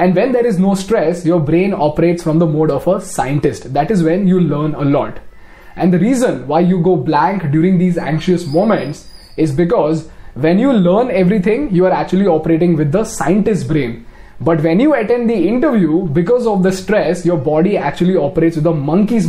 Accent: native